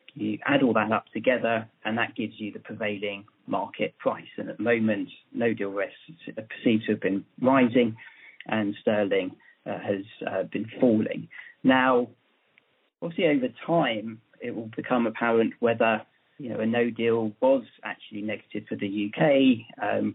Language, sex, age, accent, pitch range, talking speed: English, male, 40-59, British, 110-165 Hz, 160 wpm